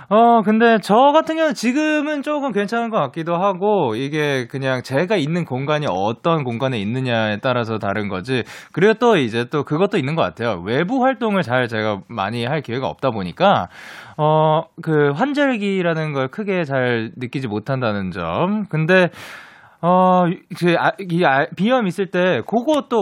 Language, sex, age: Korean, male, 20-39